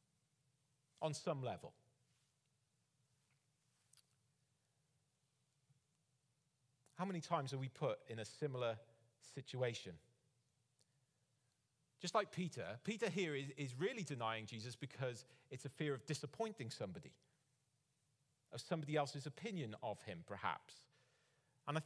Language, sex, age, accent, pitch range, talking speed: English, male, 40-59, British, 130-165 Hz, 105 wpm